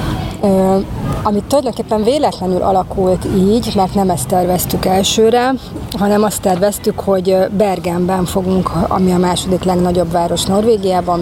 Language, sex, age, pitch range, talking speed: Hungarian, female, 30-49, 175-205 Hz, 120 wpm